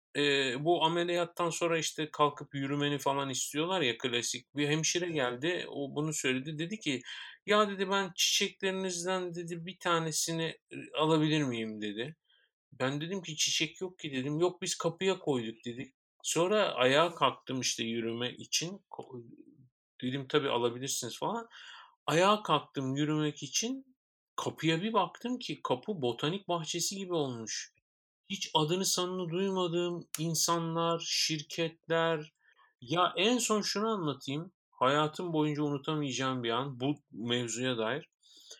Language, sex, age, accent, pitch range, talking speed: Turkish, male, 50-69, native, 140-185 Hz, 130 wpm